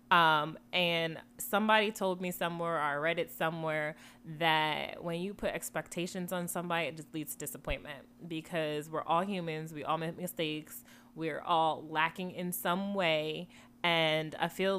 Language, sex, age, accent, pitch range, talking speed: English, female, 20-39, American, 155-185 Hz, 160 wpm